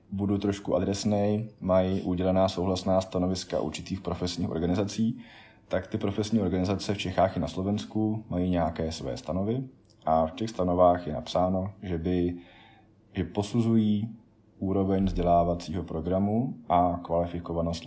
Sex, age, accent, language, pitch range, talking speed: male, 20-39, native, Czech, 85-100 Hz, 125 wpm